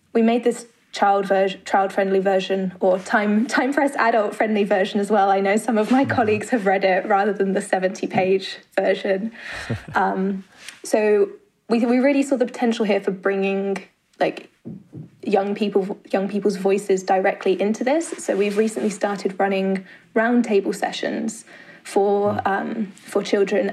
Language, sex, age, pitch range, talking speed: English, female, 20-39, 200-235 Hz, 160 wpm